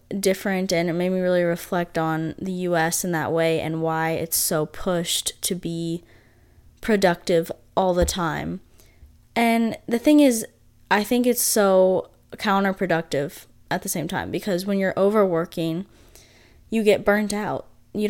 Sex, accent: female, American